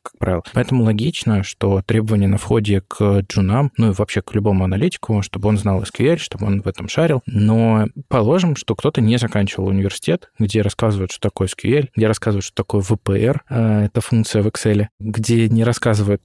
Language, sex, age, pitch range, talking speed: Russian, male, 20-39, 100-125 Hz, 180 wpm